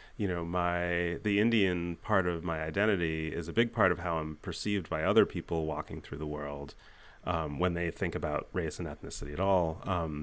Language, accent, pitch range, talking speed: English, American, 80-105 Hz, 205 wpm